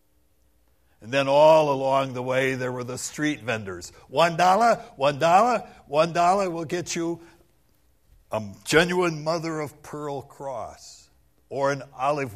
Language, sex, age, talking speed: English, male, 60-79, 140 wpm